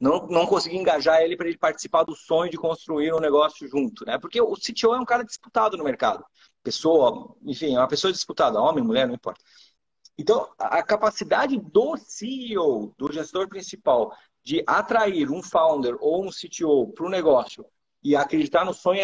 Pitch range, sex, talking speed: 170-235 Hz, male, 180 wpm